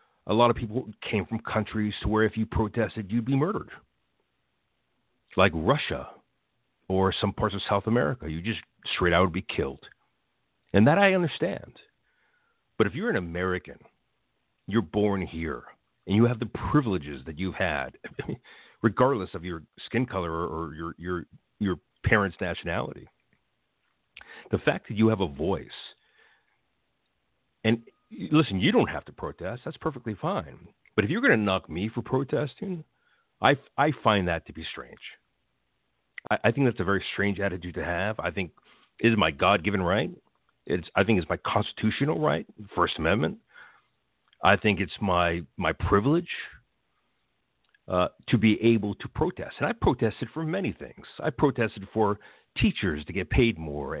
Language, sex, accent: English, male, American